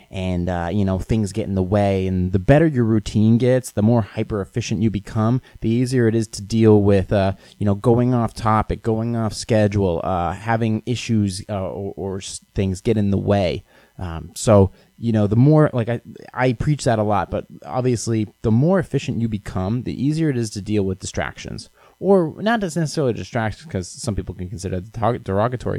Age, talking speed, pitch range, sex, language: 20-39, 200 wpm, 95-120 Hz, male, English